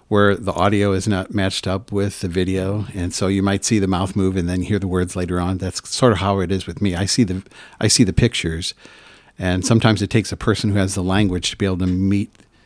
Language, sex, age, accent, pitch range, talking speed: English, male, 50-69, American, 90-105 Hz, 260 wpm